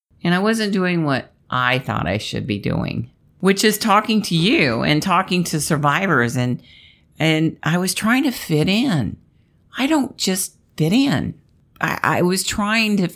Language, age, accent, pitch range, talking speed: English, 50-69, American, 135-180 Hz, 175 wpm